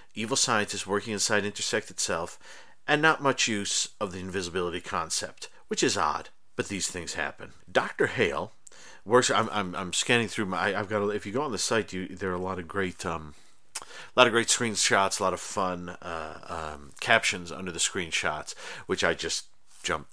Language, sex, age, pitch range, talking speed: English, male, 50-69, 95-115 Hz, 195 wpm